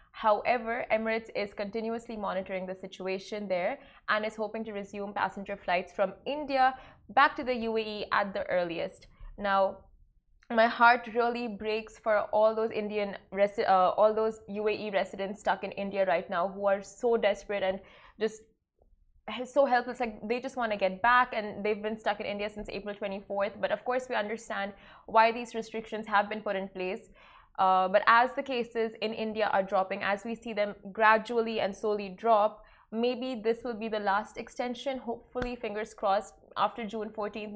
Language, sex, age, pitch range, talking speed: Arabic, female, 20-39, 200-235 Hz, 175 wpm